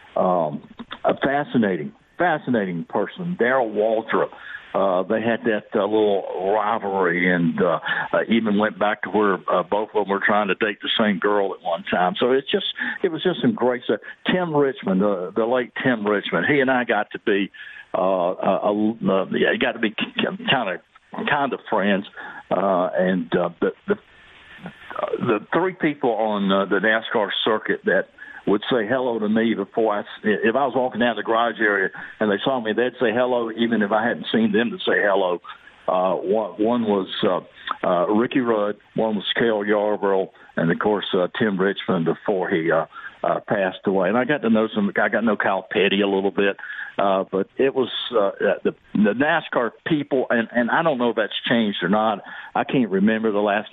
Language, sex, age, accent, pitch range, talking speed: English, male, 60-79, American, 100-125 Hz, 200 wpm